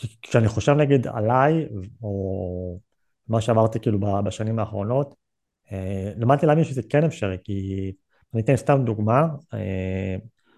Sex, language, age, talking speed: male, Hebrew, 30-49, 120 wpm